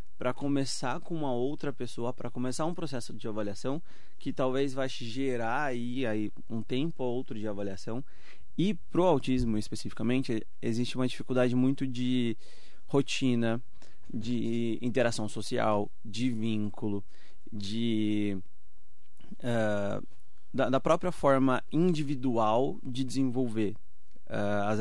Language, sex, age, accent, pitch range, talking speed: Portuguese, male, 20-39, Brazilian, 110-135 Hz, 115 wpm